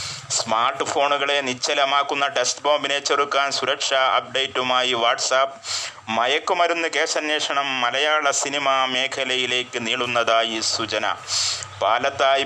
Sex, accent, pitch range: male, native, 120-140 Hz